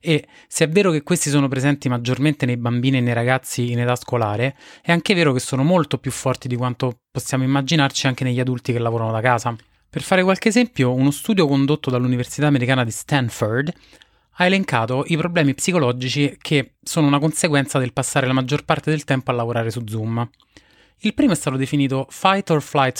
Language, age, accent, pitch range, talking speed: Italian, 30-49, native, 125-155 Hz, 195 wpm